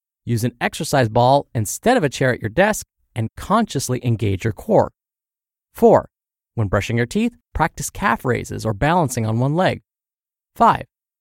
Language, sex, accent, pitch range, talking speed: English, male, American, 120-180 Hz, 160 wpm